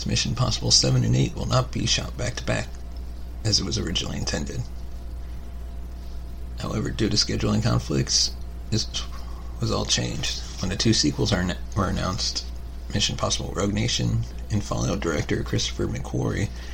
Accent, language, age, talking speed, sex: American, English, 30-49, 155 wpm, male